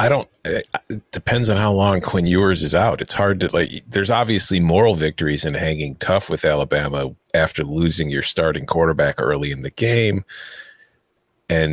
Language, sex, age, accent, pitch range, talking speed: English, male, 40-59, American, 85-120 Hz, 175 wpm